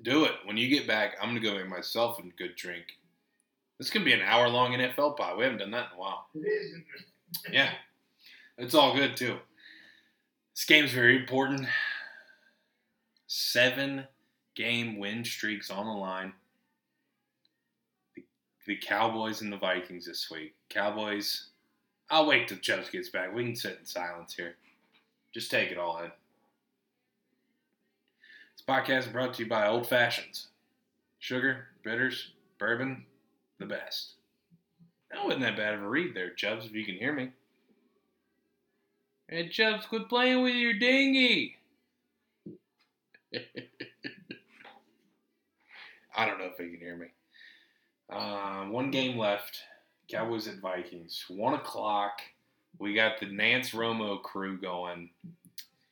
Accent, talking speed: American, 140 wpm